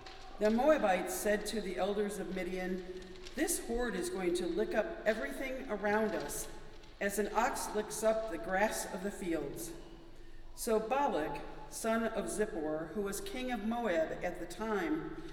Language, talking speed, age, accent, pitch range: English, 160 wpm, 50-69, American, 175-265 Hz